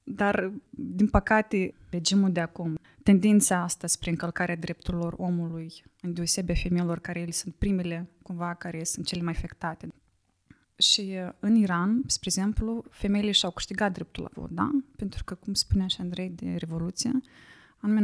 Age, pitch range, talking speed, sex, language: 20-39, 170-205 Hz, 155 wpm, female, Romanian